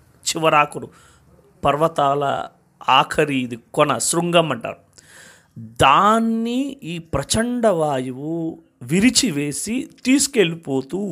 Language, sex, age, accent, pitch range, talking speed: Telugu, male, 30-49, native, 170-235 Hz, 65 wpm